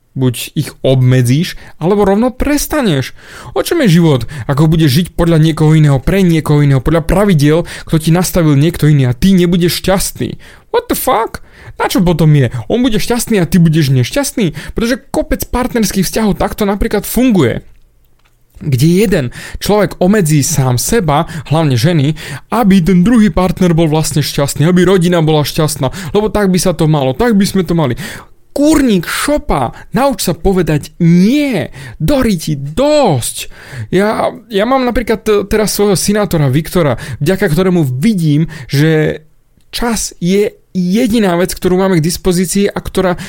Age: 30-49